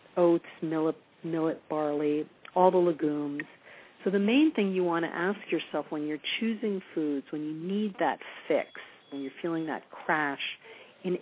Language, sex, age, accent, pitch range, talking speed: English, female, 50-69, American, 155-195 Hz, 165 wpm